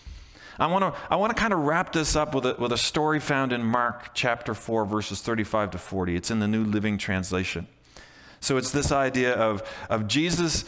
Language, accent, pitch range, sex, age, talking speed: English, American, 110-155 Hz, male, 40-59, 215 wpm